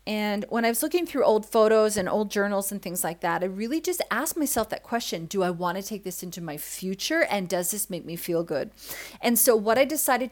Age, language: 30-49, English